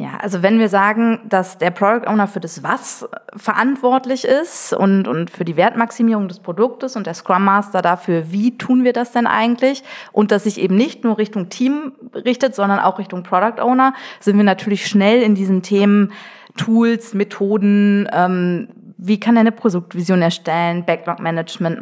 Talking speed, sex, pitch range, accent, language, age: 175 wpm, female, 180-220 Hz, German, German, 20-39